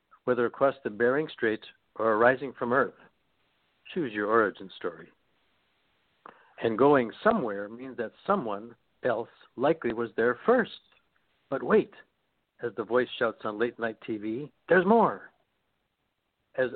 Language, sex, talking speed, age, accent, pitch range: English, male, 130 wpm, 60-79, American, 115-140 Hz